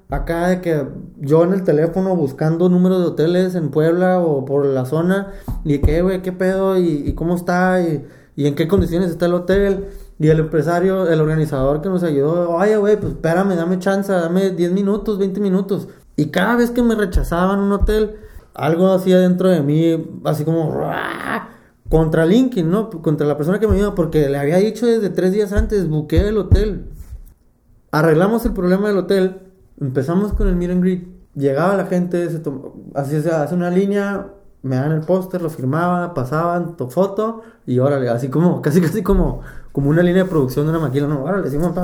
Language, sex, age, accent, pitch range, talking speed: Spanish, male, 20-39, Mexican, 150-190 Hz, 200 wpm